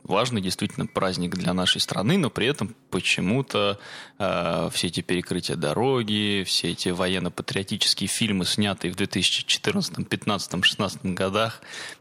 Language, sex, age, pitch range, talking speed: Russian, male, 20-39, 95-120 Hz, 120 wpm